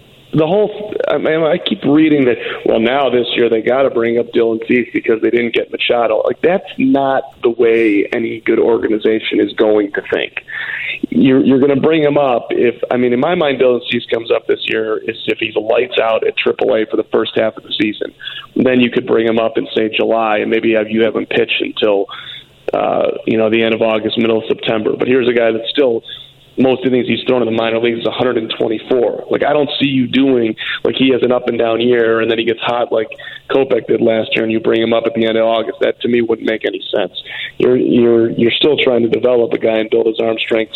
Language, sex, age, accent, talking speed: English, male, 30-49, American, 245 wpm